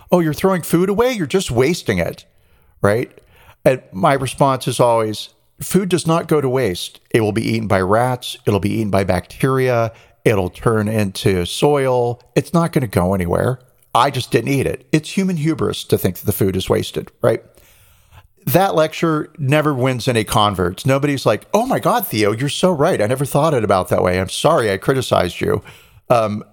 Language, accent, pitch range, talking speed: English, American, 105-145 Hz, 195 wpm